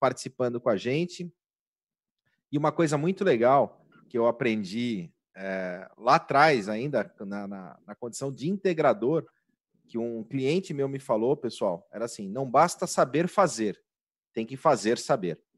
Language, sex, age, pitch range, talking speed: Portuguese, male, 40-59, 120-150 Hz, 150 wpm